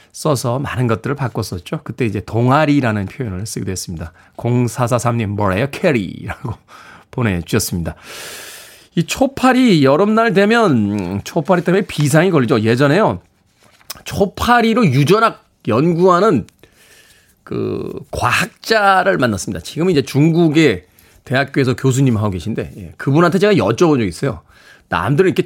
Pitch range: 120-190 Hz